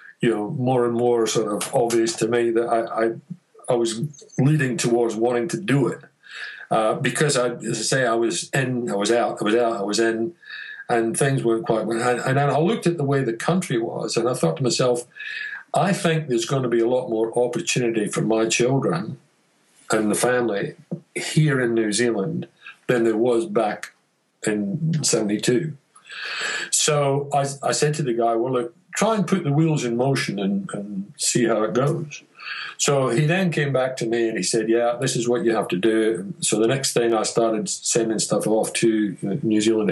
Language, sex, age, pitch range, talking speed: English, male, 50-69, 115-155 Hz, 205 wpm